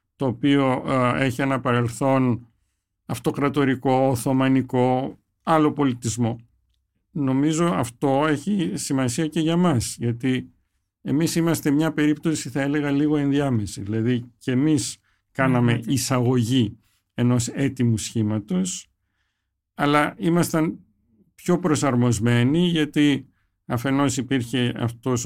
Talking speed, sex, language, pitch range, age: 95 wpm, male, Greek, 115-145 Hz, 50-69